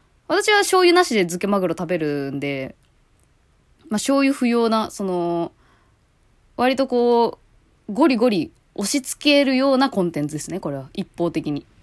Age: 20-39